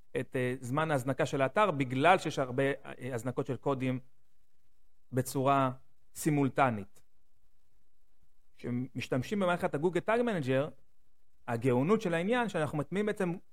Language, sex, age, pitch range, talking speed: Hebrew, male, 30-49, 135-180 Hz, 105 wpm